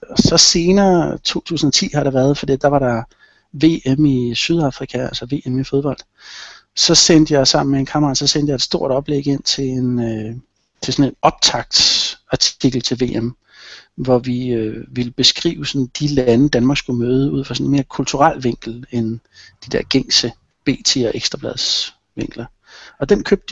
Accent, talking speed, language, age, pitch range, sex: native, 175 wpm, Danish, 60-79, 130-155 Hz, male